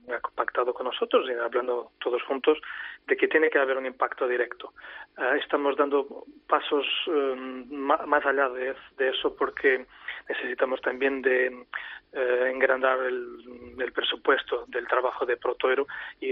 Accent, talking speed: Spanish, 140 wpm